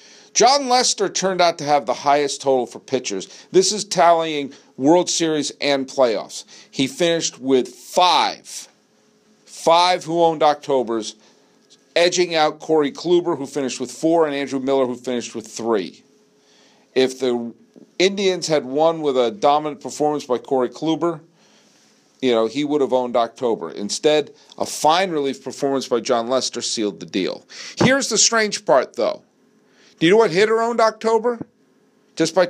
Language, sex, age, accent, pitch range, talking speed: English, male, 50-69, American, 145-225 Hz, 160 wpm